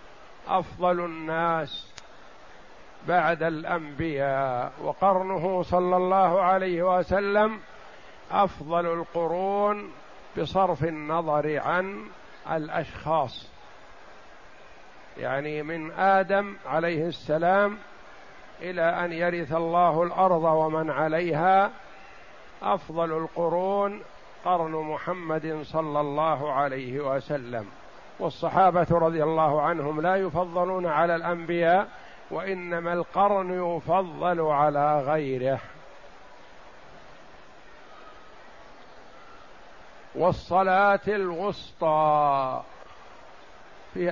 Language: Arabic